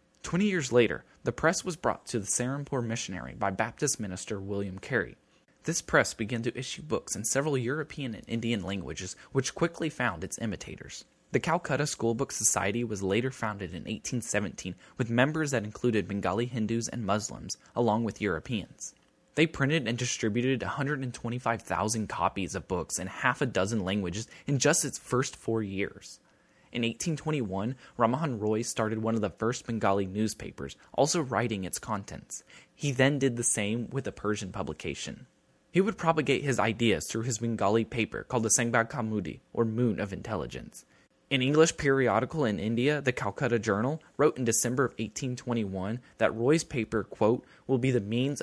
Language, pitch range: English, 105-135 Hz